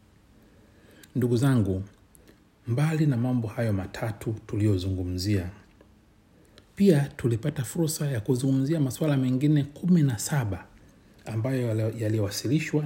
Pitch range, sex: 100-125 Hz, male